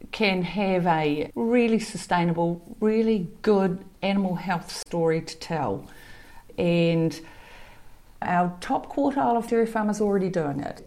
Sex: female